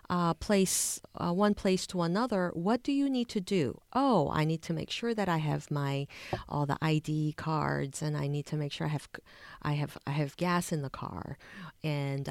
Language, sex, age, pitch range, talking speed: English, female, 40-59, 155-215 Hz, 215 wpm